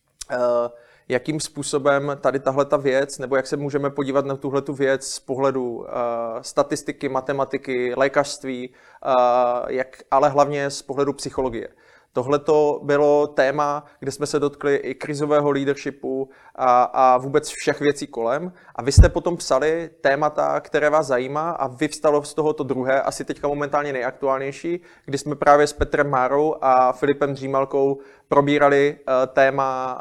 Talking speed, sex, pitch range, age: 140 wpm, male, 135-150 Hz, 20-39